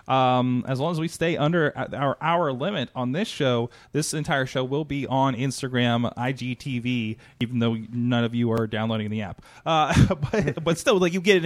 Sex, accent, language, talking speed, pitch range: male, American, English, 200 wpm, 120-155 Hz